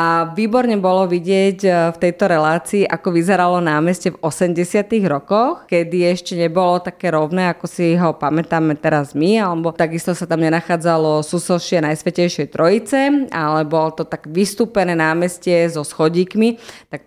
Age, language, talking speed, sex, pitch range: 20-39, Slovak, 145 wpm, female, 160-190 Hz